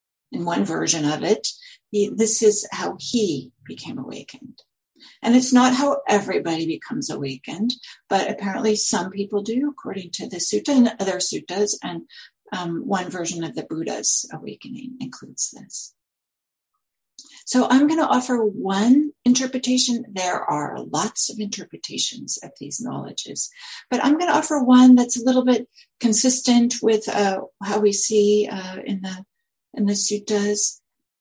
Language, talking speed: English, 150 wpm